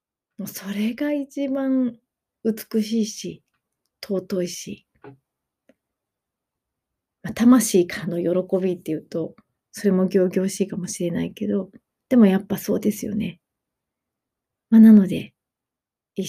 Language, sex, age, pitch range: Japanese, female, 30-49, 180-220 Hz